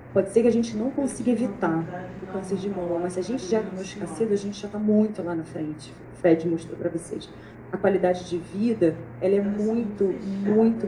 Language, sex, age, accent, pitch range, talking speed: Portuguese, female, 30-49, Brazilian, 175-220 Hz, 215 wpm